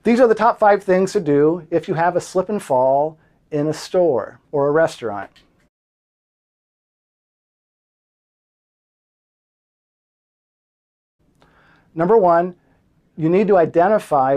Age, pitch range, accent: 40-59, 135-170 Hz, American